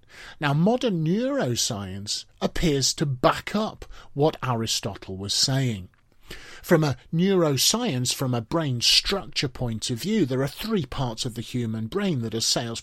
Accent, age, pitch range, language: British, 40-59, 115-140 Hz, English